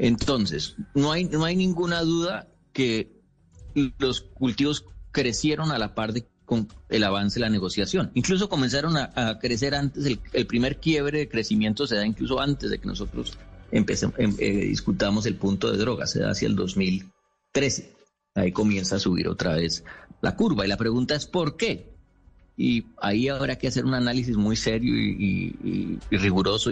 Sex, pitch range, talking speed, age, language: male, 95-135 Hz, 180 wpm, 40-59, Spanish